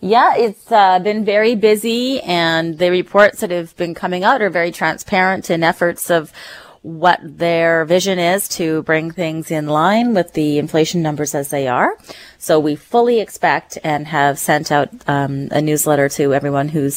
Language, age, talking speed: English, 30-49, 175 wpm